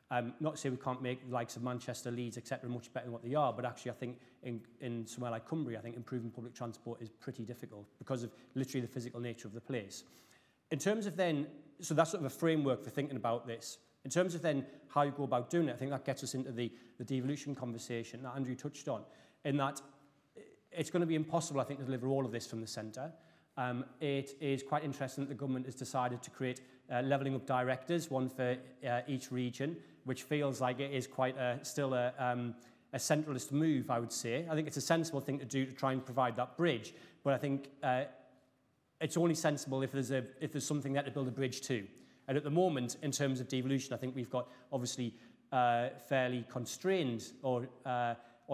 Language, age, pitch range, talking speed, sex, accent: English, 30-49, 125-140 Hz, 225 wpm, male, British